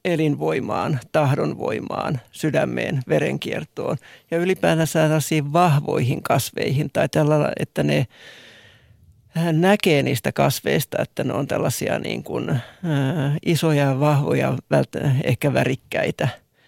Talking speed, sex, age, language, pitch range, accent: 95 wpm, male, 60-79, Finnish, 135-160 Hz, native